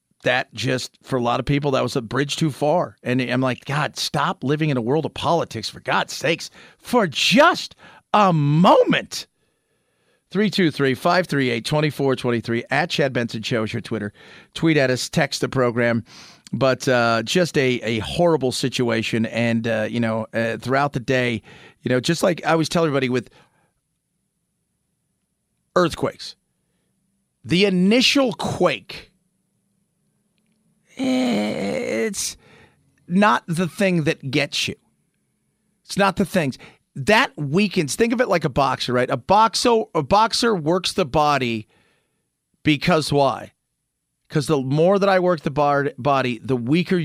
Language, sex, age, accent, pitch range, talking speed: English, male, 40-59, American, 125-170 Hz, 155 wpm